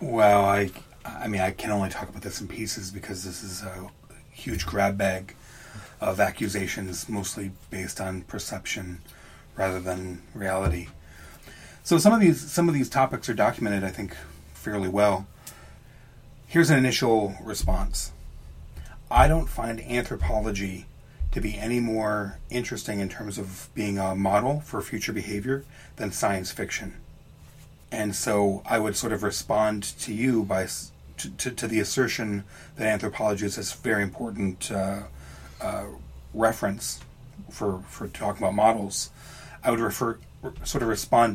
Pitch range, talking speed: 95-115 Hz, 150 wpm